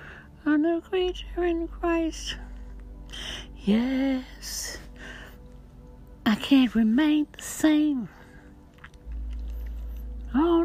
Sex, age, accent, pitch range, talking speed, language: female, 60-79, American, 265-390 Hz, 70 wpm, English